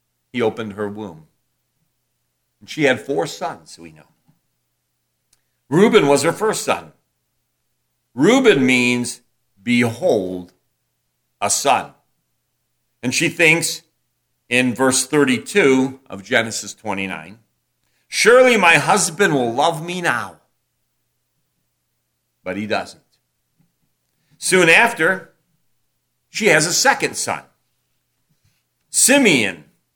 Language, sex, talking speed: English, male, 95 wpm